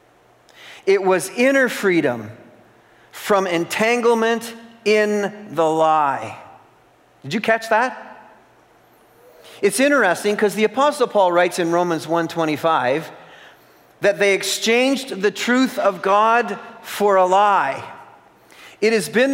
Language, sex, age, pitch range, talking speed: English, male, 40-59, 185-230 Hz, 115 wpm